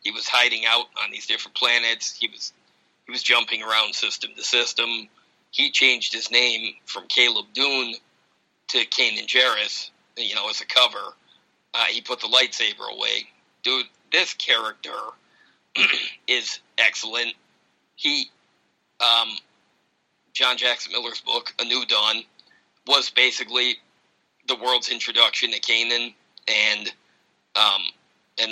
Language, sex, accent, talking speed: English, male, American, 130 wpm